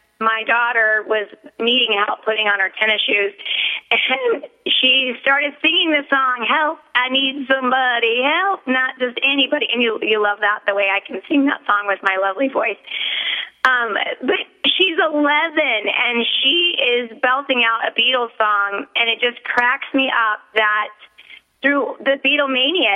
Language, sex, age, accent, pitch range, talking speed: English, female, 30-49, American, 225-275 Hz, 160 wpm